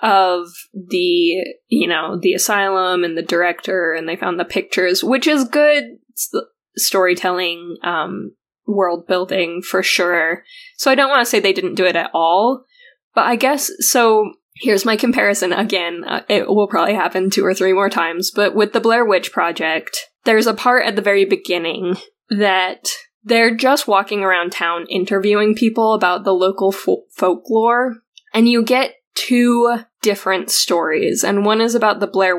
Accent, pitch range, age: American, 185-235 Hz, 10-29